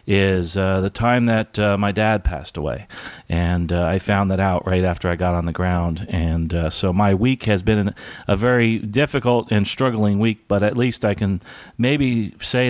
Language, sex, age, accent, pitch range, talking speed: English, male, 40-59, American, 90-105 Hz, 205 wpm